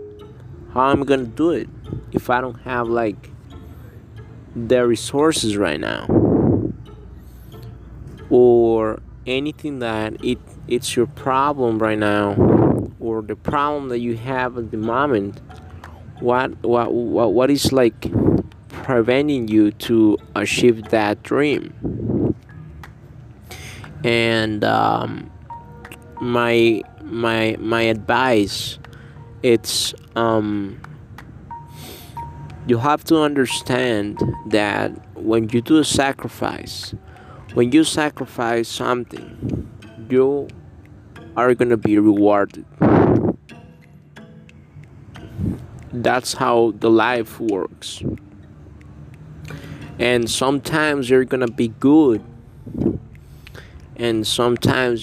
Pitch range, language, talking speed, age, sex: 110-125 Hz, English, 95 wpm, 20-39, male